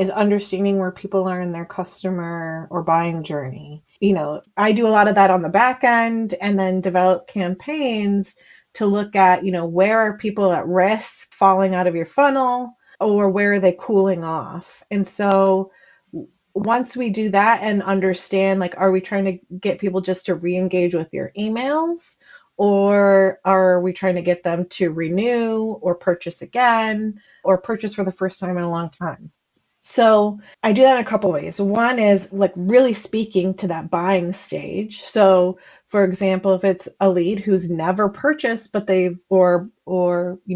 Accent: American